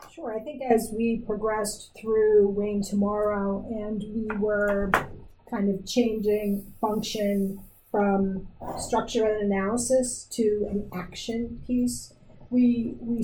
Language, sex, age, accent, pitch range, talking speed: English, female, 40-59, American, 200-225 Hz, 120 wpm